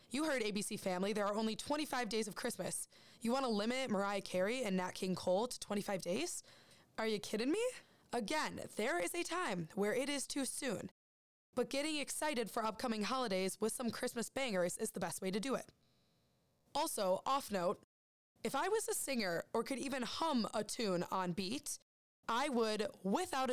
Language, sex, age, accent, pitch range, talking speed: English, female, 20-39, American, 195-245 Hz, 190 wpm